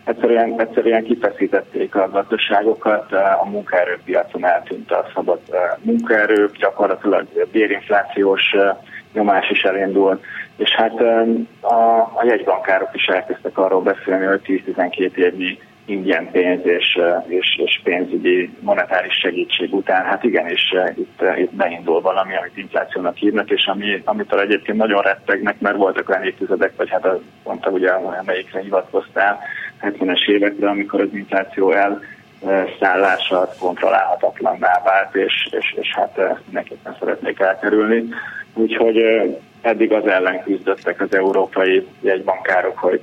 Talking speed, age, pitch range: 125 wpm, 30-49, 95-115 Hz